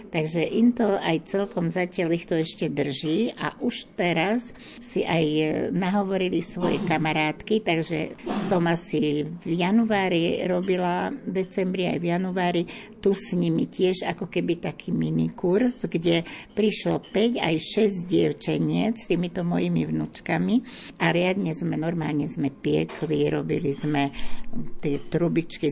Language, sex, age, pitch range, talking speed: Slovak, female, 60-79, 150-190 Hz, 130 wpm